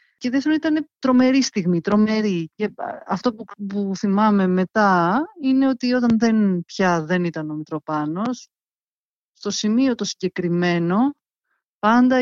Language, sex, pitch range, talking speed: Greek, female, 180-225 Hz, 130 wpm